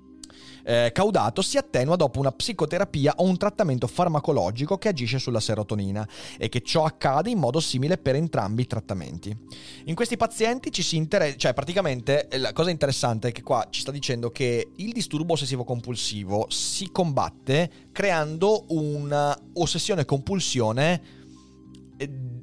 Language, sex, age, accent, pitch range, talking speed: Italian, male, 30-49, native, 120-165 Hz, 140 wpm